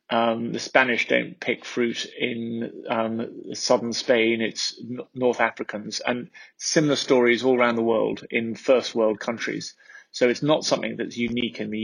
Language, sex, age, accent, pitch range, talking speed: English, male, 30-49, British, 110-125 Hz, 160 wpm